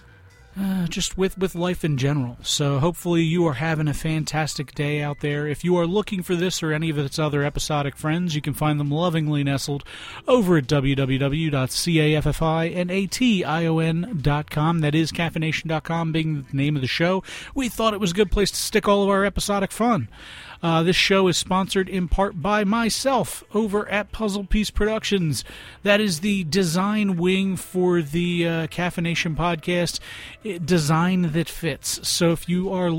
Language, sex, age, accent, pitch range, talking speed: English, male, 40-59, American, 150-185 Hz, 170 wpm